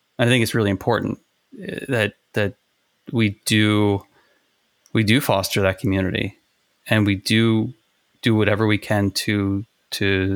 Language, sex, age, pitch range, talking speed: English, male, 20-39, 100-115 Hz, 135 wpm